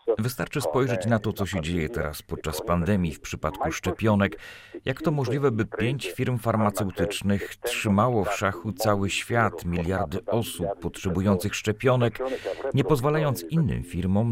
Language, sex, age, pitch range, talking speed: Polish, male, 40-59, 95-125 Hz, 140 wpm